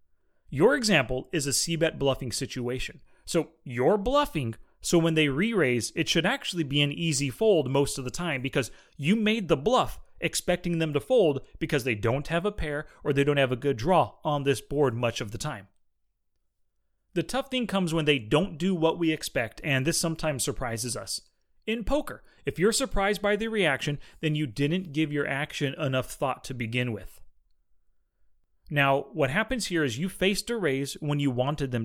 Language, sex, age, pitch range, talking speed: English, male, 30-49, 130-175 Hz, 190 wpm